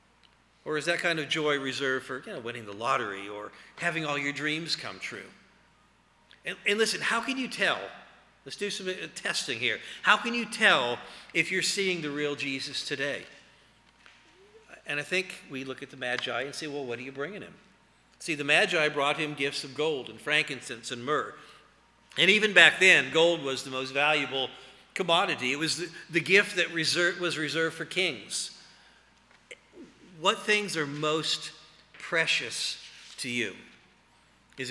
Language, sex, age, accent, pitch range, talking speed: English, male, 50-69, American, 135-185 Hz, 170 wpm